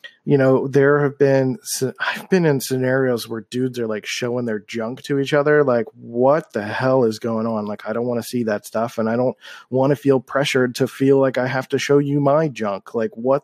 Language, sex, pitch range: English, male, 120-145 Hz